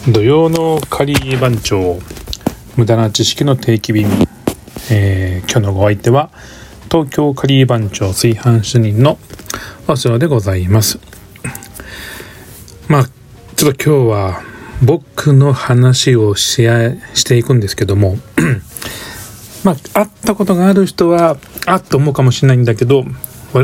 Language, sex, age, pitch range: Japanese, male, 40-59, 105-135 Hz